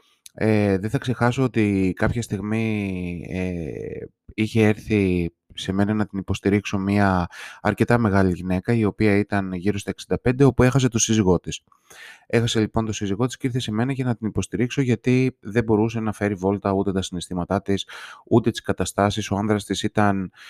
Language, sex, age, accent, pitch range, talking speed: Greek, male, 20-39, native, 95-120 Hz, 175 wpm